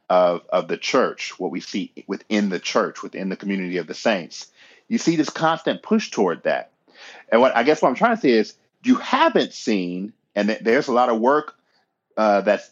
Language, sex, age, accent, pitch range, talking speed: English, male, 40-59, American, 95-120 Hz, 210 wpm